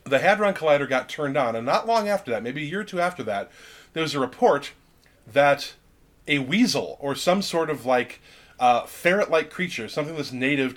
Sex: male